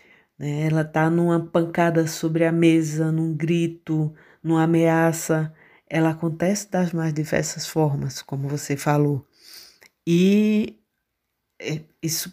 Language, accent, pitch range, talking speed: Portuguese, Brazilian, 165-200 Hz, 105 wpm